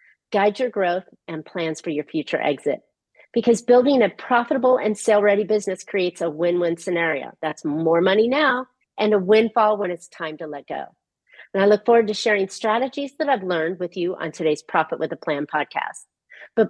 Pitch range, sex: 170-235 Hz, female